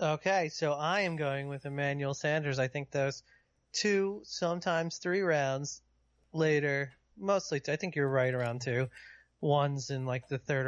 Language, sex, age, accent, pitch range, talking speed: English, male, 30-49, American, 125-150 Hz, 155 wpm